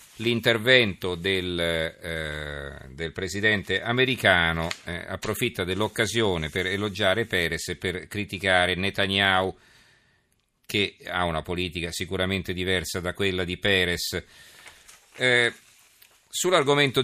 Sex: male